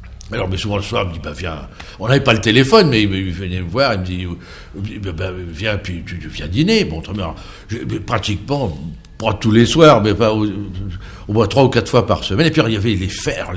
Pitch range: 95-125 Hz